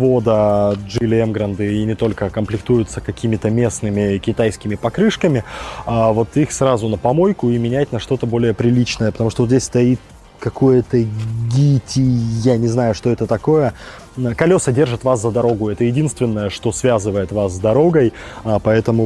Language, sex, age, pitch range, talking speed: Russian, male, 20-39, 110-130 Hz, 155 wpm